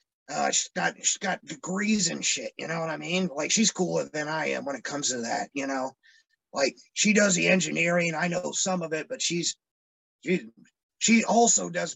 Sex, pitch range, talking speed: male, 180-245 Hz, 210 wpm